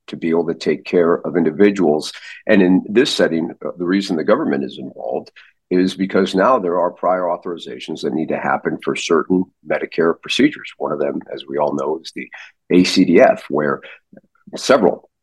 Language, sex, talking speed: English, male, 175 wpm